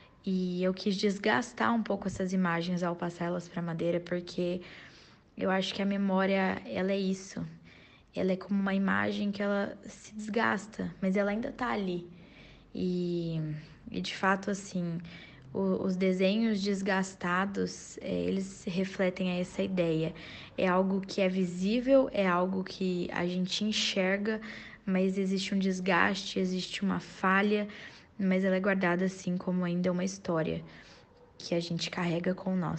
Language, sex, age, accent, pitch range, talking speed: Portuguese, female, 10-29, Brazilian, 175-195 Hz, 150 wpm